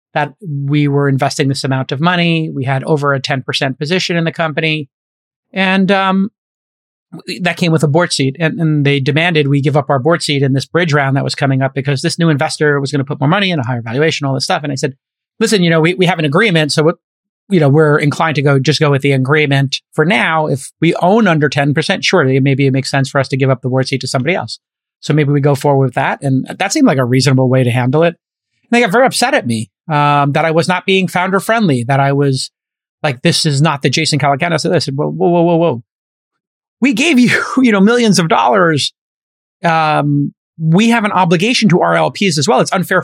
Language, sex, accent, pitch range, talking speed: English, male, American, 140-175 Hz, 240 wpm